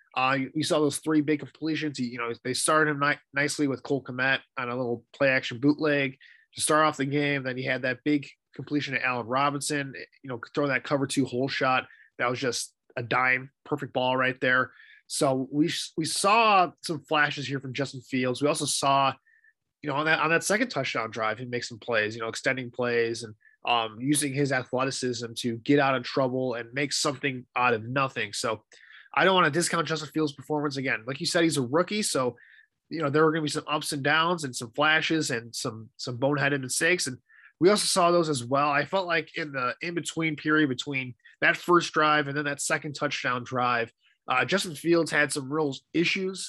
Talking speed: 215 wpm